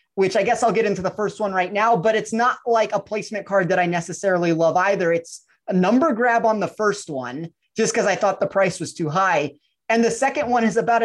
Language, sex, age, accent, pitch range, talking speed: English, male, 30-49, American, 185-225 Hz, 250 wpm